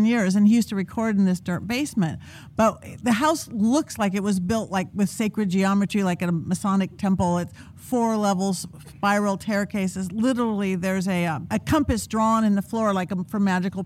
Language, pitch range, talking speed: English, 195-250 Hz, 195 wpm